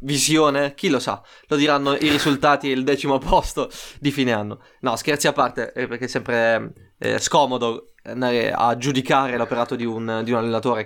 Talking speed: 180 wpm